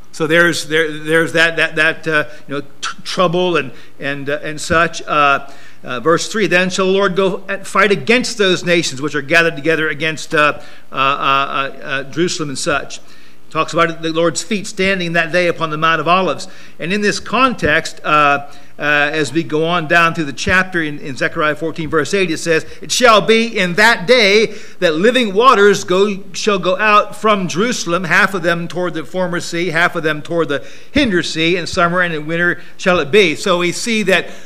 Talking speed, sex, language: 205 wpm, male, English